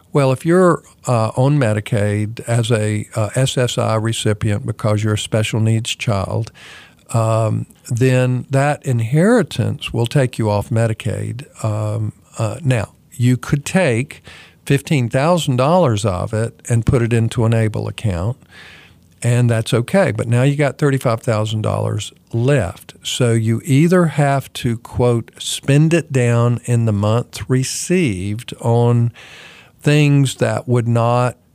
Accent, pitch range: American, 110-130 Hz